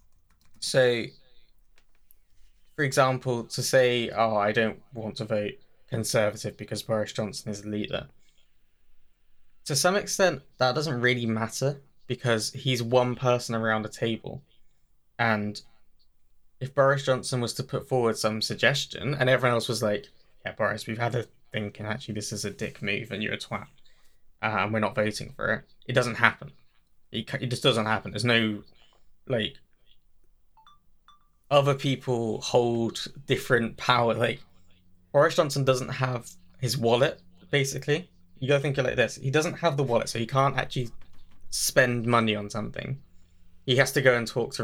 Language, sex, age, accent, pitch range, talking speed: English, male, 10-29, British, 105-130 Hz, 160 wpm